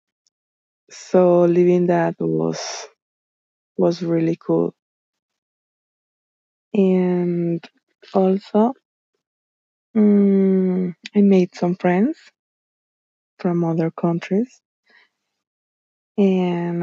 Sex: female